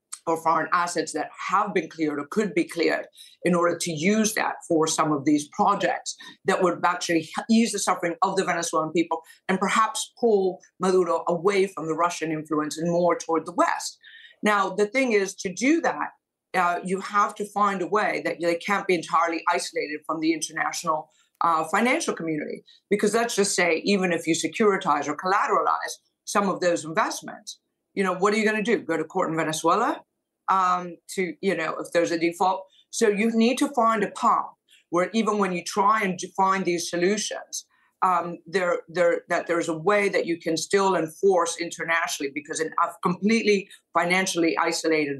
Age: 50-69